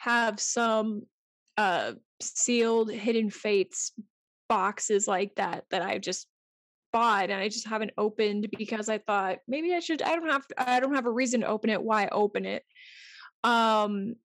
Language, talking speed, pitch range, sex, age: English, 170 wpm, 215-260 Hz, female, 20-39